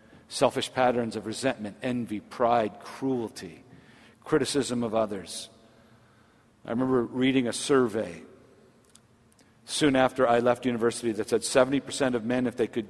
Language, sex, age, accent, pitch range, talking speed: English, male, 50-69, American, 115-160 Hz, 130 wpm